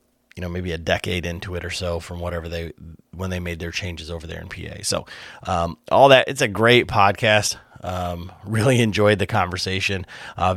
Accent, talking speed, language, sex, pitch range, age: American, 200 wpm, English, male, 90-105 Hz, 30-49